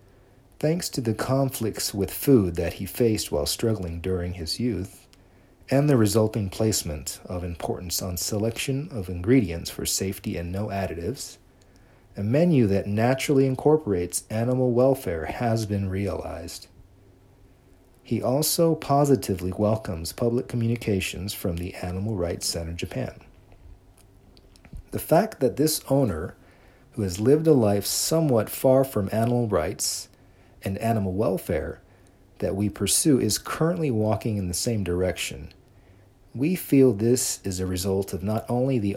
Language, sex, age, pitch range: Japanese, male, 40-59, 95-120 Hz